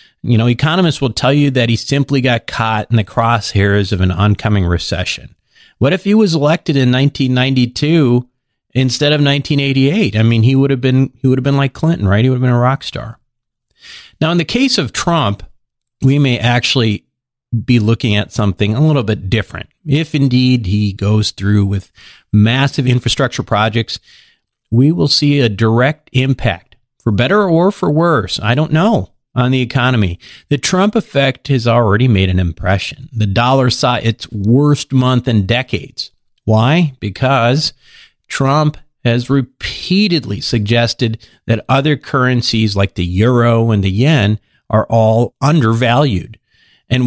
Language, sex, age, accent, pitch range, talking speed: English, male, 40-59, American, 115-140 Hz, 160 wpm